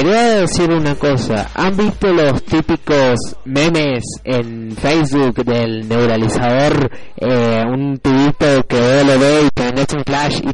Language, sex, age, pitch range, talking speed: Spanish, male, 20-39, 135-200 Hz, 135 wpm